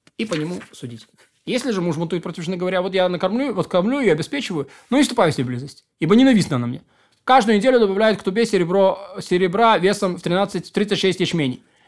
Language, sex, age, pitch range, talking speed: Russian, male, 20-39, 160-215 Hz, 200 wpm